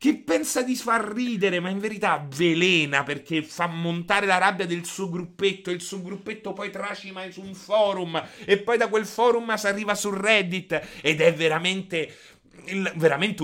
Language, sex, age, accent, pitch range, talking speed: Italian, male, 30-49, native, 165-205 Hz, 175 wpm